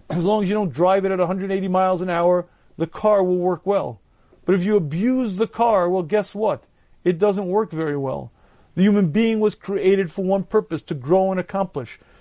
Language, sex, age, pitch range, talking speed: English, male, 40-59, 180-210 Hz, 210 wpm